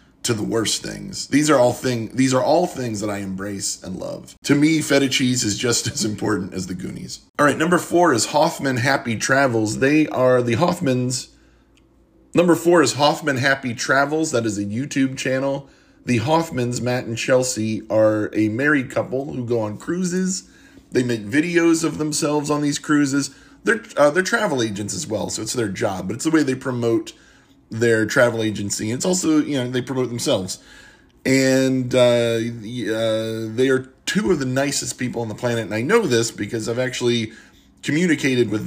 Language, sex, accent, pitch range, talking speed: English, male, American, 110-140 Hz, 190 wpm